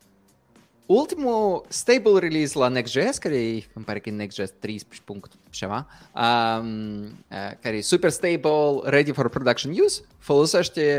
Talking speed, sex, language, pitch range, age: 105 wpm, male, English, 120-165 Hz, 20-39